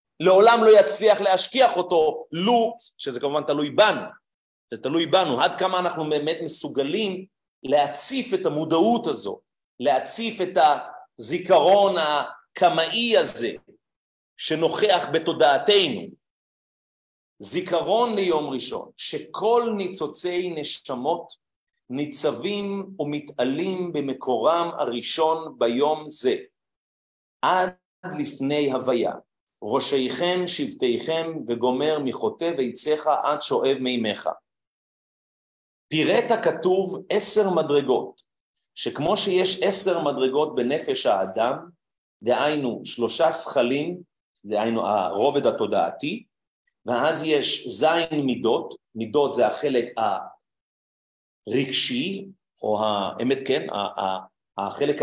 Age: 40-59